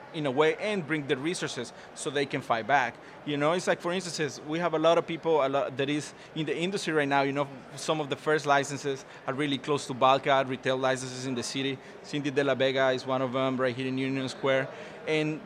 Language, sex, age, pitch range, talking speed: English, male, 30-49, 135-160 Hz, 240 wpm